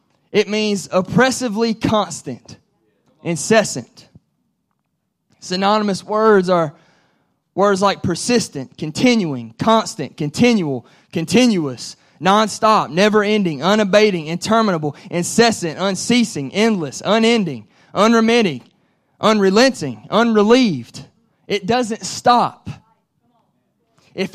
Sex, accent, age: male, American, 20-39